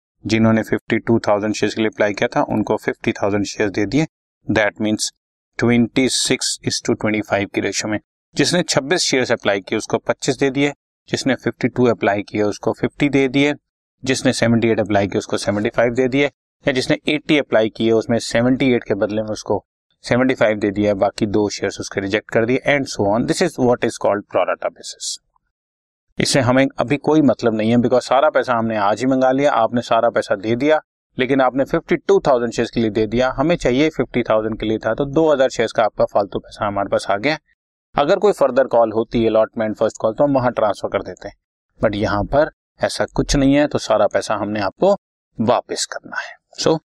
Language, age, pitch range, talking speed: Hindi, 30-49, 105-135 Hz, 145 wpm